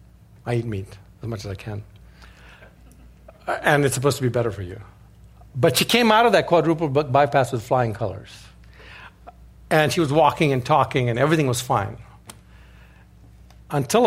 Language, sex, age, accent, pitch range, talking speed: English, male, 60-79, American, 105-140 Hz, 160 wpm